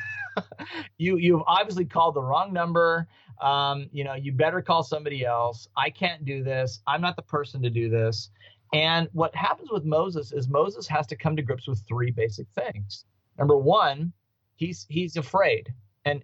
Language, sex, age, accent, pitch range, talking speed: English, male, 40-59, American, 115-155 Hz, 180 wpm